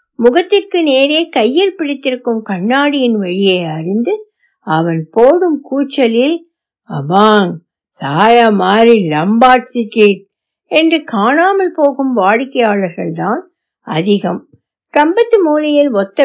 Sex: female